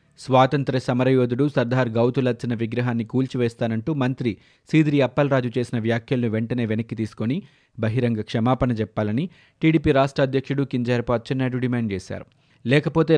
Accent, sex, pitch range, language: native, male, 115-140 Hz, Telugu